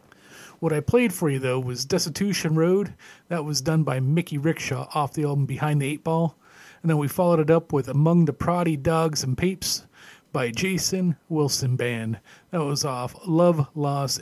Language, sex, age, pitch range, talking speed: English, male, 40-59, 140-170 Hz, 185 wpm